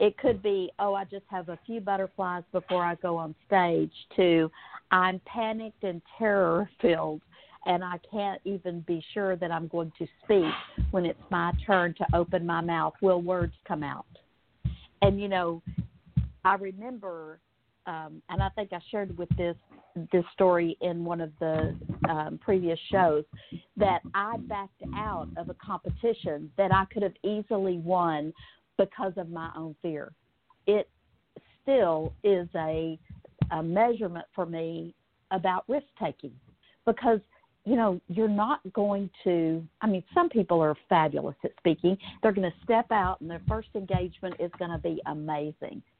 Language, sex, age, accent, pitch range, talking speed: English, female, 50-69, American, 170-205 Hz, 160 wpm